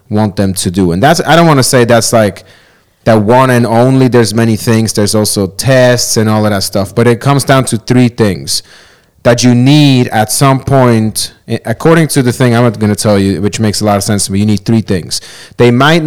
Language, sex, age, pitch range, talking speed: English, male, 30-49, 105-125 Hz, 240 wpm